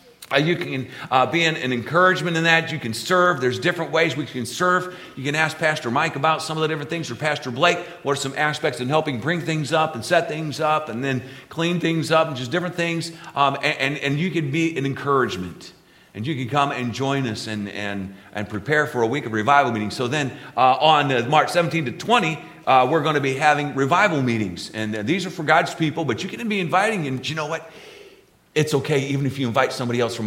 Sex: male